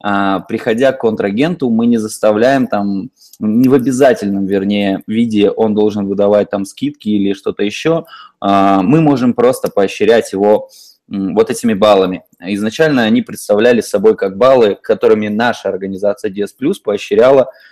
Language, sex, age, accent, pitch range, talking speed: Russian, male, 20-39, native, 100-160 Hz, 135 wpm